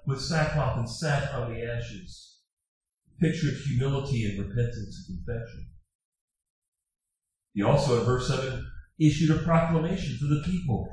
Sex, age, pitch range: male, 40-59, 105-150 Hz